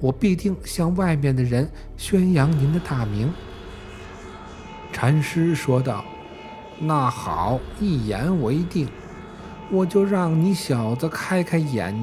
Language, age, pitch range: Chinese, 60-79, 105-165 Hz